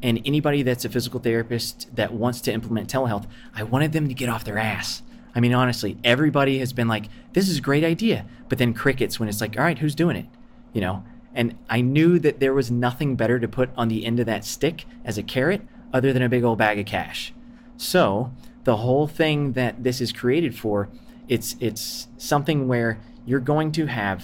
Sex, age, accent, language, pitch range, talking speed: male, 30-49, American, English, 115-140 Hz, 220 wpm